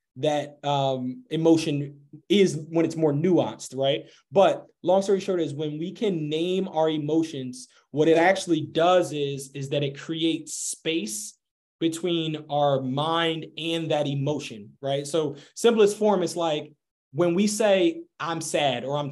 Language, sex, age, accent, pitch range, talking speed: English, male, 20-39, American, 145-170 Hz, 155 wpm